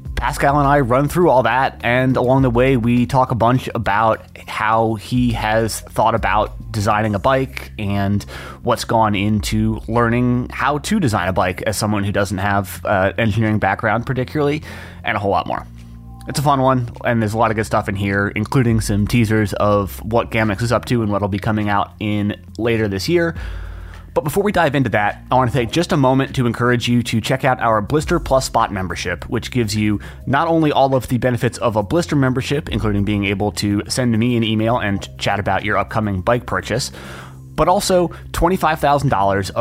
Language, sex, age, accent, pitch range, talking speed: English, male, 20-39, American, 100-125 Hz, 205 wpm